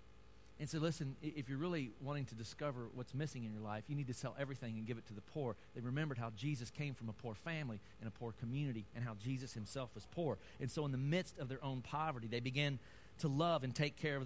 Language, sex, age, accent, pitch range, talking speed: English, male, 40-59, American, 115-155 Hz, 255 wpm